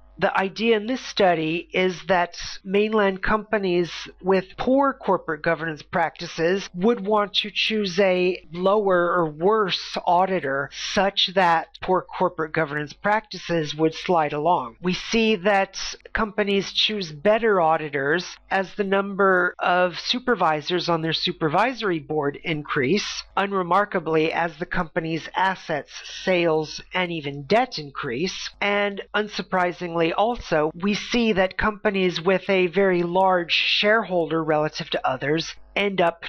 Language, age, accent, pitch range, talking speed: English, 40-59, American, 160-195 Hz, 125 wpm